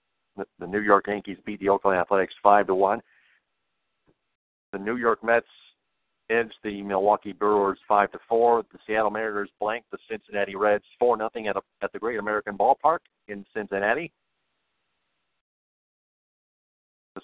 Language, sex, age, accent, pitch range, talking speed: English, male, 50-69, American, 100-115 Hz, 145 wpm